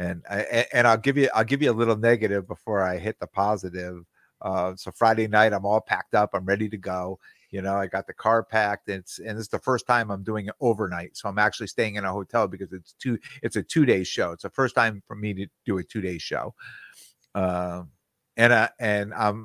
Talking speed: 230 wpm